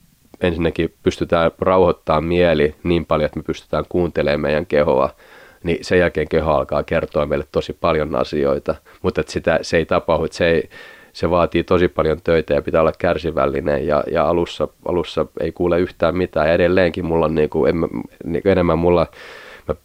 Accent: native